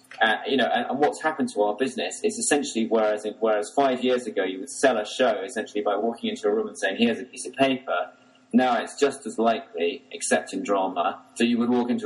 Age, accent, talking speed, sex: 30-49, British, 250 wpm, male